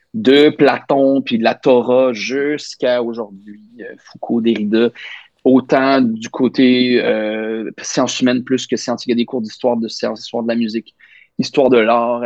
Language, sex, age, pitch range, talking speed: French, male, 30-49, 115-150 Hz, 170 wpm